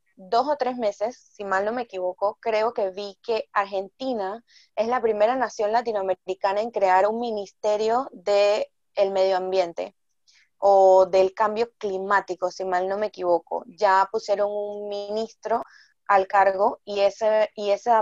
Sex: female